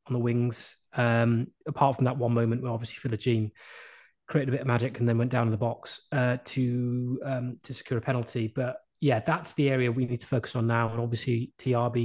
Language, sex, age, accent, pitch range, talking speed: English, male, 20-39, British, 120-140 Hz, 230 wpm